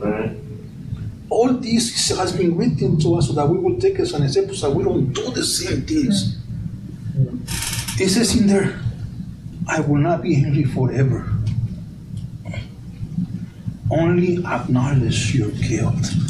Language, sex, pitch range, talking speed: English, male, 120-150 Hz, 135 wpm